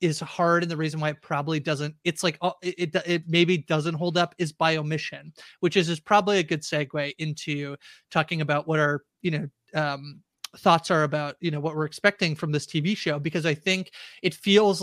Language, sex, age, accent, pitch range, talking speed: English, male, 30-49, American, 150-170 Hz, 215 wpm